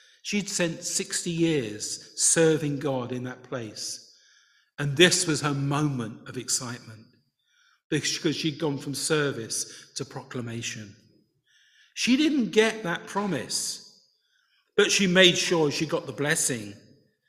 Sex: male